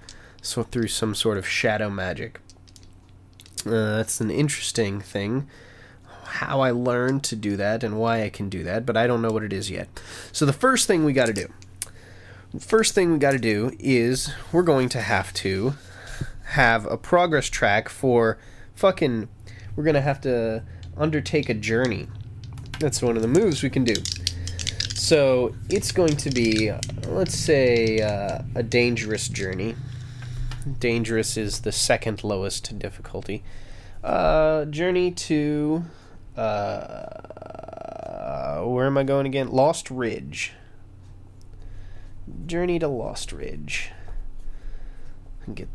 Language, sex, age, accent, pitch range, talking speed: English, male, 20-39, American, 95-135 Hz, 135 wpm